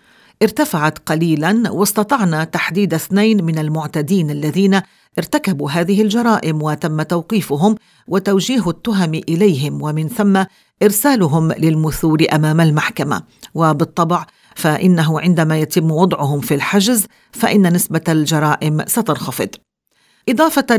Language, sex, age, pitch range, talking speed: English, female, 50-69, 155-200 Hz, 100 wpm